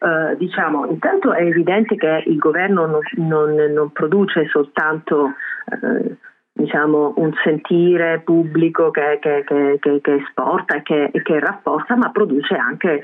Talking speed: 140 wpm